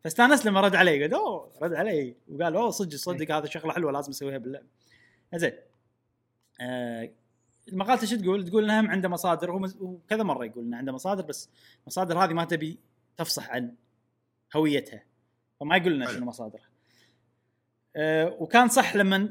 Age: 20-39